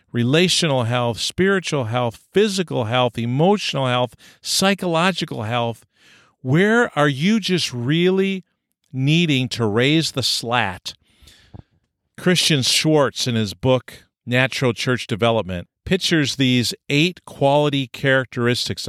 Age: 50-69